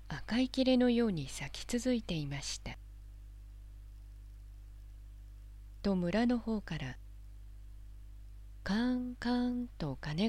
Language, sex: Japanese, female